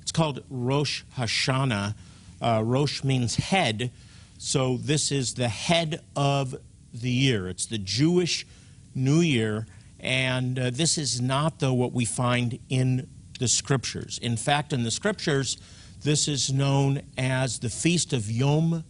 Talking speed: 145 wpm